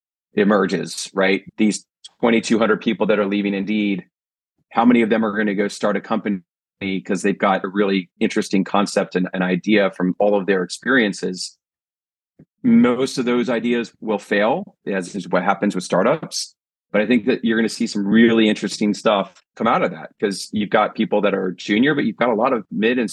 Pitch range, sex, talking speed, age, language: 100-120 Hz, male, 200 wpm, 40-59, English